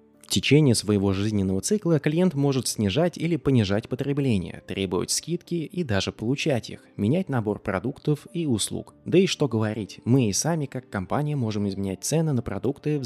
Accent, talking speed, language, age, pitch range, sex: native, 170 wpm, Russian, 20-39, 95-135 Hz, male